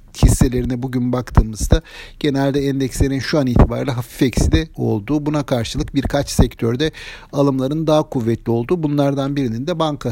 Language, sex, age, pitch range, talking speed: Turkish, male, 60-79, 120-150 Hz, 140 wpm